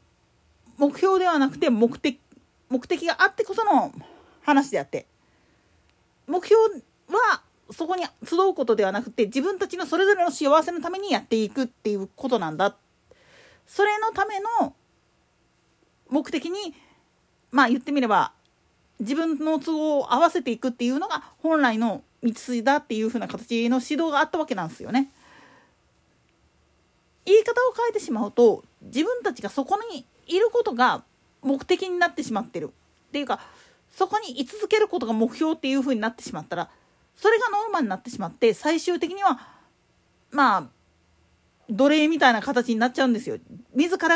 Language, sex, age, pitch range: Japanese, female, 40-59, 235-350 Hz